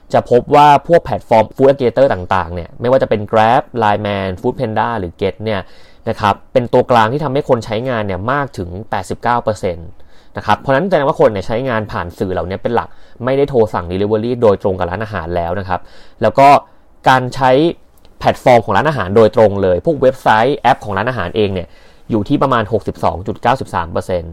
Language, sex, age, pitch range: Thai, male, 30-49, 95-125 Hz